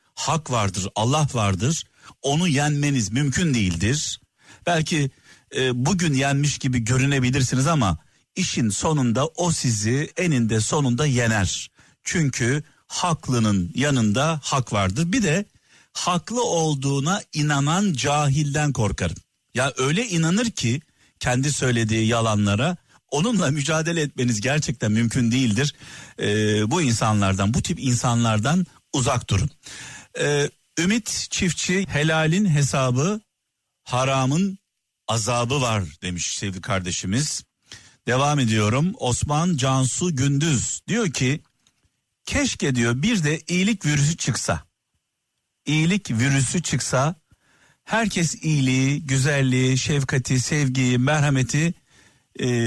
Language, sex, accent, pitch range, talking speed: Turkish, male, native, 120-155 Hz, 105 wpm